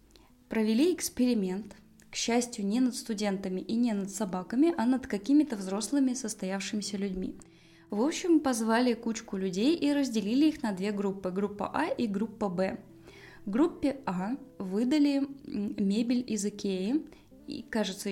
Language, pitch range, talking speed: Russian, 200-260 Hz, 140 wpm